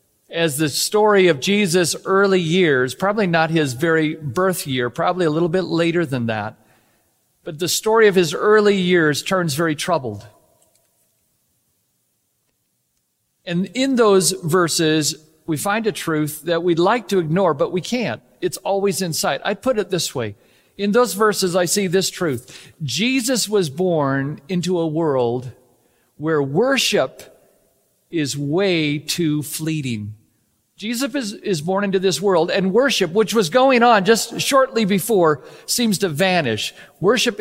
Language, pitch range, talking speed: English, 155-205 Hz, 150 wpm